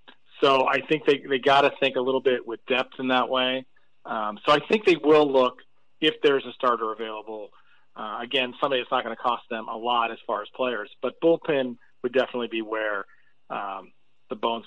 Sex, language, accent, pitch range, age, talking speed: male, English, American, 115-140 Hz, 40-59, 215 wpm